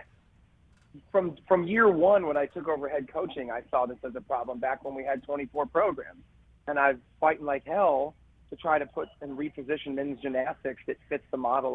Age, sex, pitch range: 30-49, male, 125-145 Hz